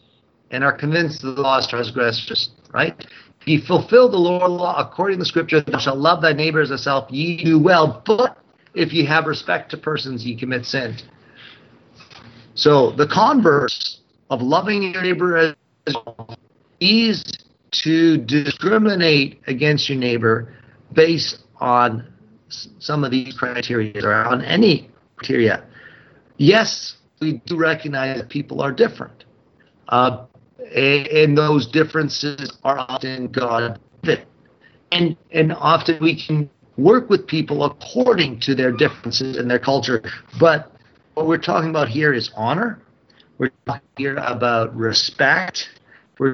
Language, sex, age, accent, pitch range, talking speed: English, male, 50-69, American, 125-160 Hz, 140 wpm